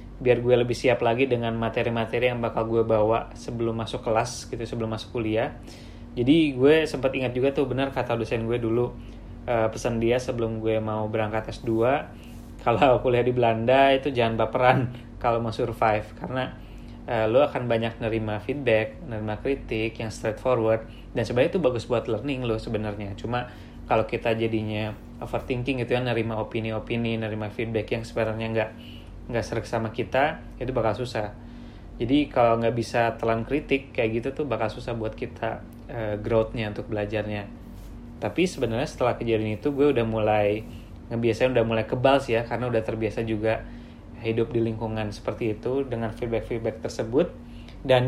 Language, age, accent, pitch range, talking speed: Indonesian, 20-39, native, 110-125 Hz, 165 wpm